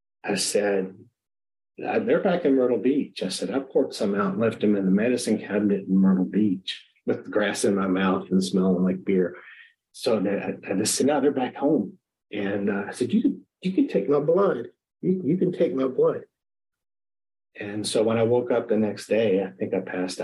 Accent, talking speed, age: American, 205 wpm, 40-59